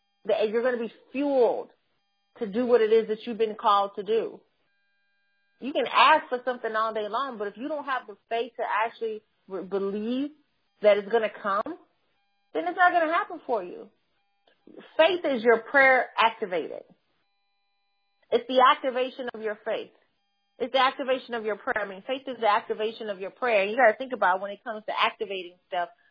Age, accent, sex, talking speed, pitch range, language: 30-49, American, female, 195 wpm, 200-255 Hz, English